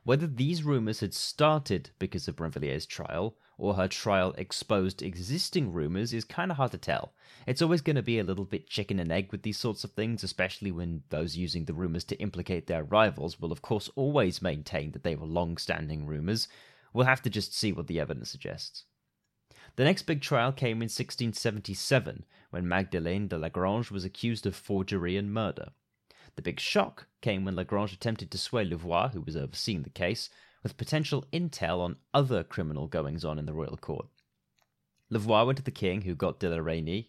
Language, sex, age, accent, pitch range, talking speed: English, male, 30-49, British, 90-125 Hz, 195 wpm